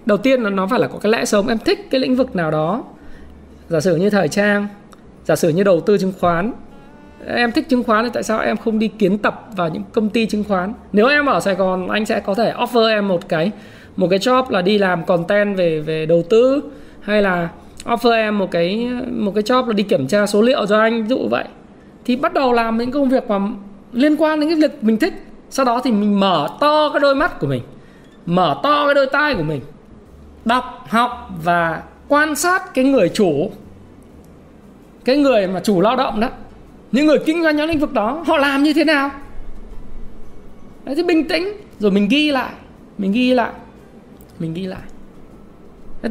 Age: 20-39